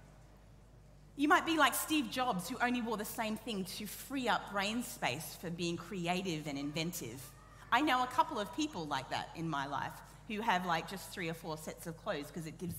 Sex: female